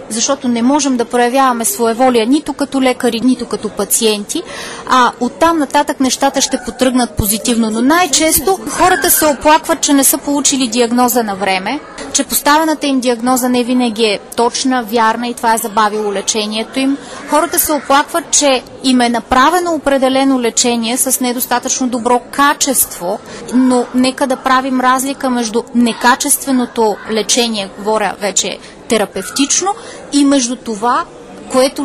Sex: female